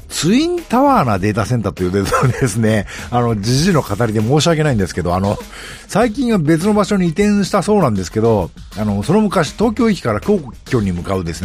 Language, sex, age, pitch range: Japanese, male, 50-69, 100-160 Hz